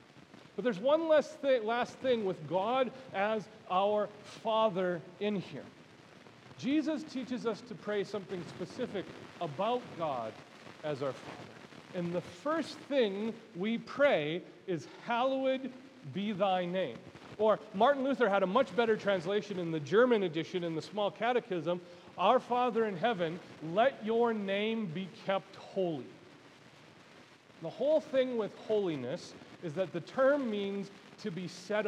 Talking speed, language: 140 wpm, English